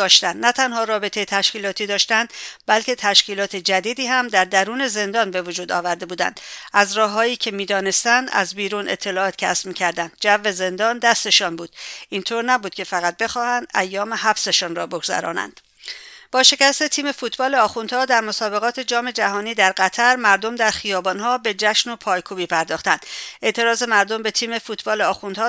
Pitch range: 190-235 Hz